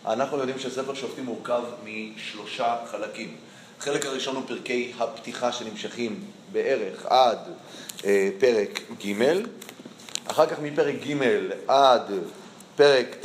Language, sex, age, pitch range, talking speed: Hebrew, male, 30-49, 115-150 Hz, 110 wpm